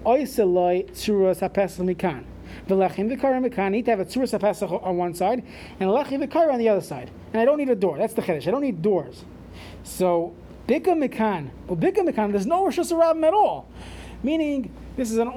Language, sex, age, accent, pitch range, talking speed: English, male, 30-49, American, 190-275 Hz, 210 wpm